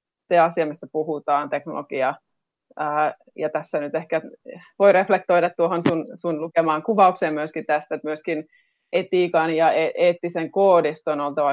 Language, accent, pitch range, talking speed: Finnish, native, 155-175 Hz, 140 wpm